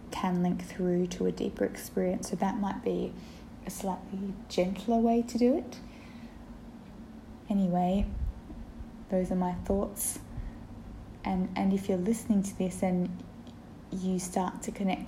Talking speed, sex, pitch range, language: 140 wpm, female, 180-205 Hz, English